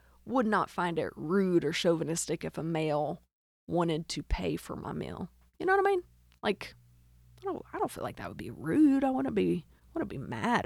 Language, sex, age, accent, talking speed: English, female, 30-49, American, 220 wpm